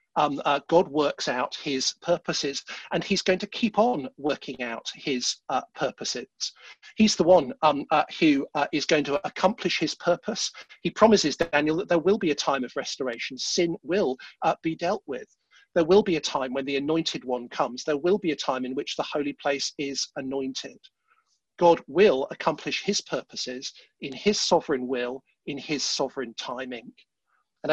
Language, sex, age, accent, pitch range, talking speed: English, male, 50-69, British, 140-185 Hz, 180 wpm